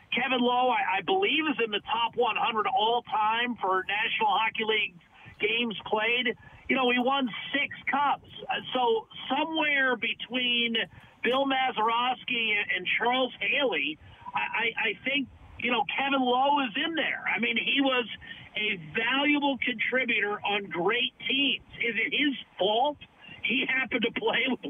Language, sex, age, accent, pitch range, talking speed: English, male, 50-69, American, 215-260 Hz, 150 wpm